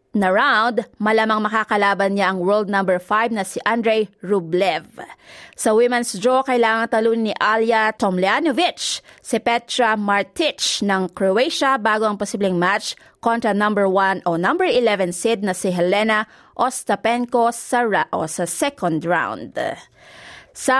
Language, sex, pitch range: Filipino, female, 195-255 Hz